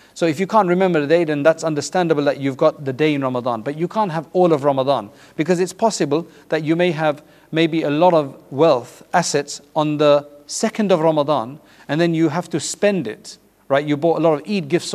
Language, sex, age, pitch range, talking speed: English, male, 50-69, 145-175 Hz, 230 wpm